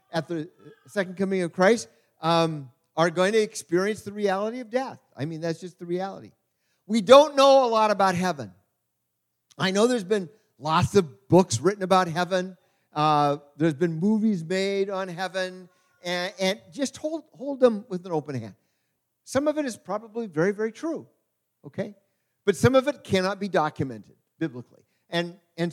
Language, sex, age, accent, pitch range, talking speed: English, male, 50-69, American, 165-220 Hz, 175 wpm